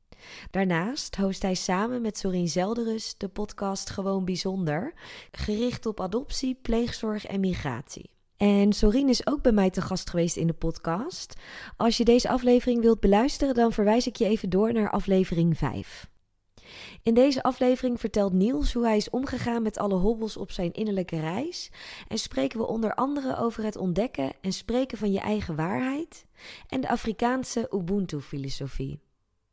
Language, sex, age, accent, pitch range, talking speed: Dutch, female, 20-39, Dutch, 190-250 Hz, 160 wpm